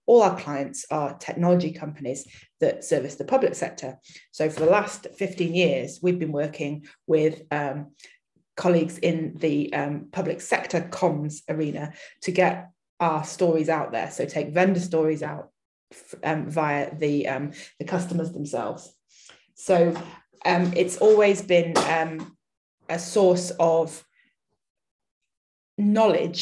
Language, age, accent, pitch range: English, 20-39, British, 160-185 Hz